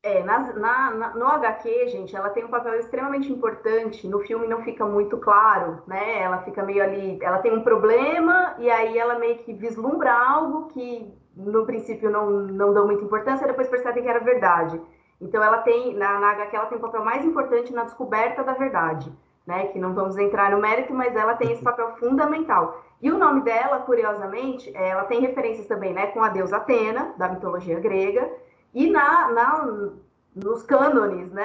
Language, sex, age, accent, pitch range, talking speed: Portuguese, female, 20-39, Brazilian, 200-260 Hz, 190 wpm